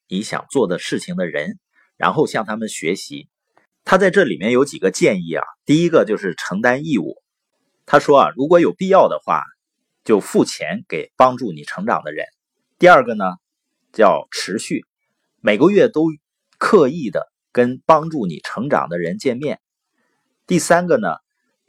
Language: Chinese